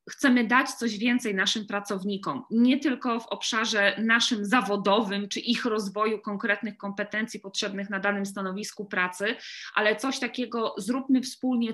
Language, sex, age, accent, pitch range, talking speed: Polish, female, 20-39, native, 195-240 Hz, 140 wpm